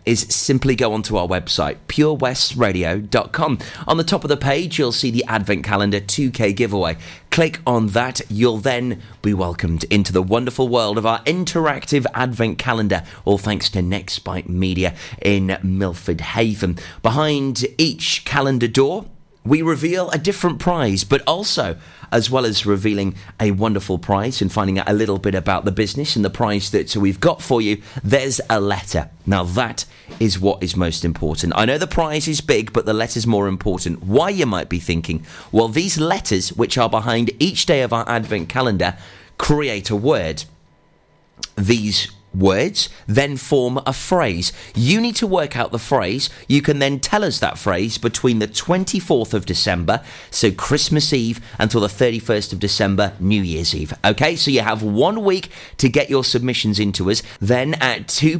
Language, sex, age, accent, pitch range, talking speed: English, male, 30-49, British, 100-135 Hz, 175 wpm